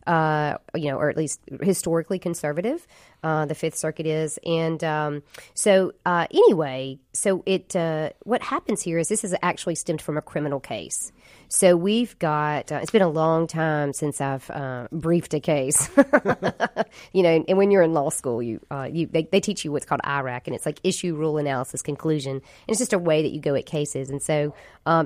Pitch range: 145-175 Hz